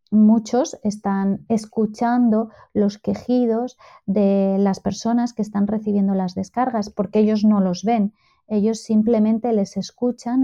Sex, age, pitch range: female, 20-39, 210-245 Hz